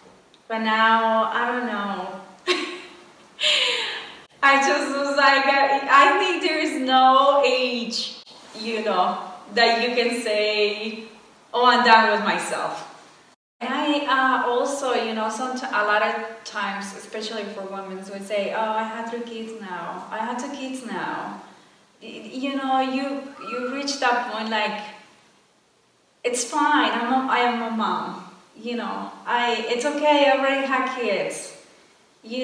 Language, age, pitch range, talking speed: English, 20-39, 220-260 Hz, 145 wpm